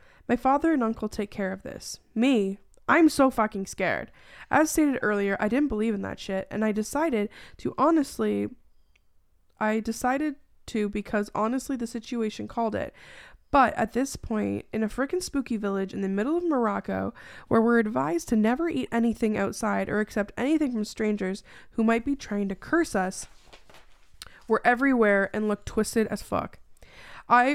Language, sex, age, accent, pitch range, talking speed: English, female, 10-29, American, 205-245 Hz, 170 wpm